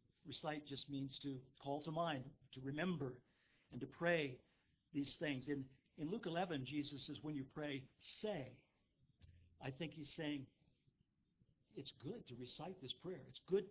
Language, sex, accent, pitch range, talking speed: English, male, American, 135-170 Hz, 160 wpm